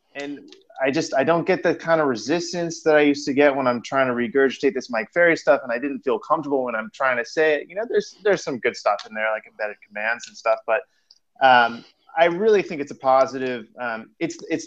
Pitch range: 115-155 Hz